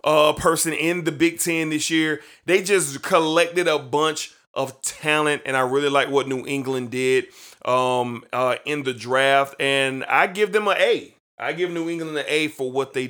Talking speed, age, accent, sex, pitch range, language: 195 wpm, 30-49, American, male, 135-170 Hz, English